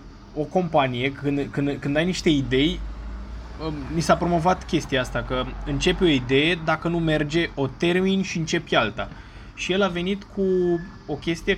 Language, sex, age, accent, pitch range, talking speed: Romanian, male, 20-39, native, 130-170 Hz, 160 wpm